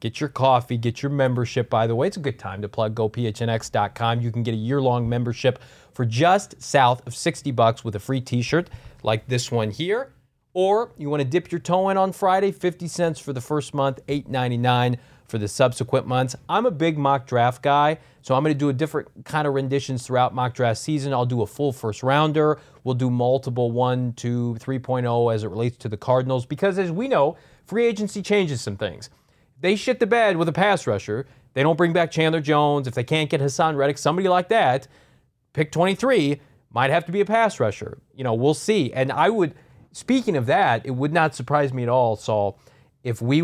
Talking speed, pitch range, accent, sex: 215 wpm, 120-155 Hz, American, male